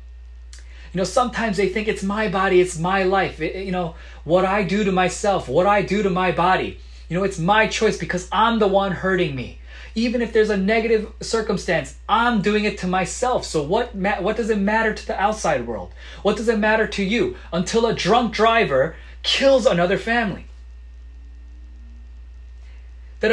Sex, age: male, 30-49